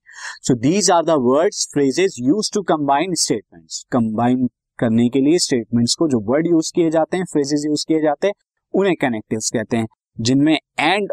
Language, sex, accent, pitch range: Hindi, male, native, 130-165 Hz